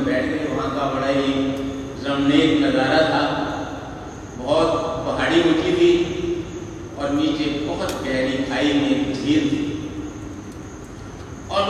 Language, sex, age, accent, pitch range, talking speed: Hindi, male, 50-69, native, 140-175 Hz, 60 wpm